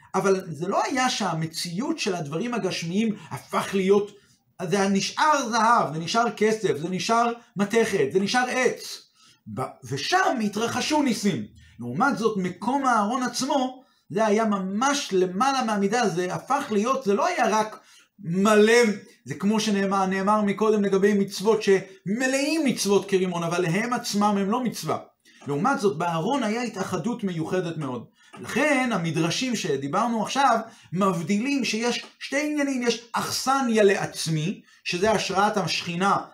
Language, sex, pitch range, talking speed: Hebrew, male, 185-235 Hz, 125 wpm